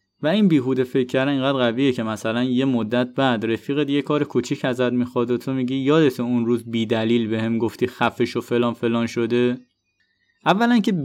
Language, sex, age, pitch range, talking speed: Persian, male, 20-39, 115-145 Hz, 185 wpm